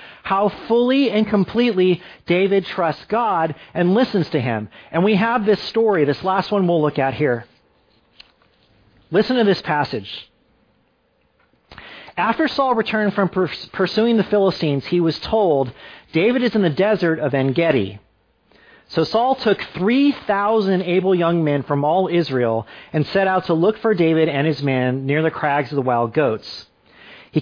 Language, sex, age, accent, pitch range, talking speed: English, male, 40-59, American, 145-210 Hz, 160 wpm